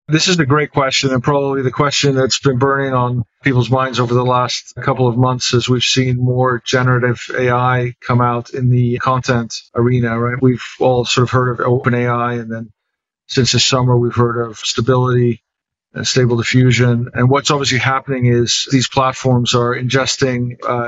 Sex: male